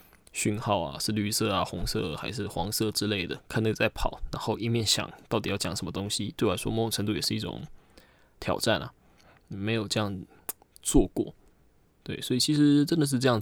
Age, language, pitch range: 20-39, Chinese, 105-120 Hz